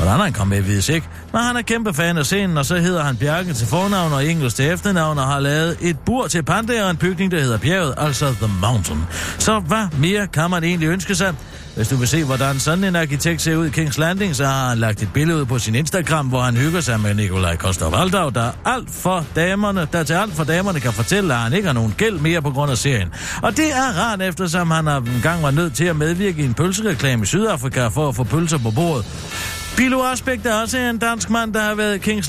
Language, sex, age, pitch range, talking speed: Danish, male, 60-79, 125-180 Hz, 245 wpm